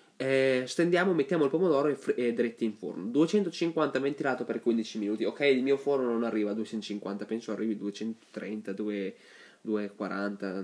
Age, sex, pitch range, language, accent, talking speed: 20-39, male, 115-150 Hz, Italian, native, 165 wpm